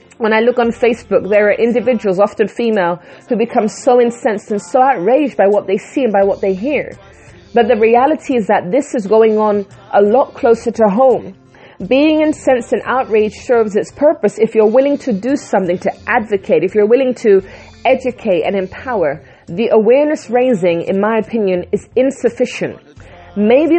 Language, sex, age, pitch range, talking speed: English, female, 30-49, 200-245 Hz, 180 wpm